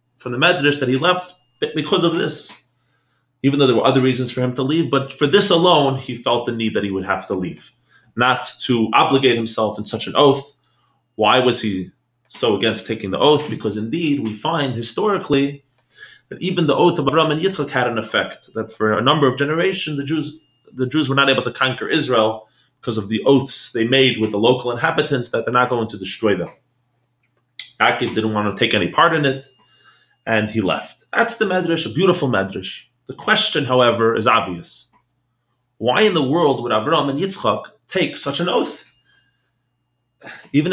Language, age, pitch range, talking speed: English, 30-49, 115-145 Hz, 195 wpm